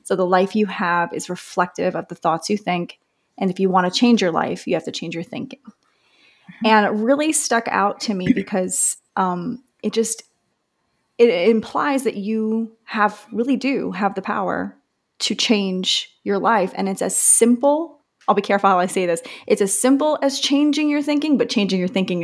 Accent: American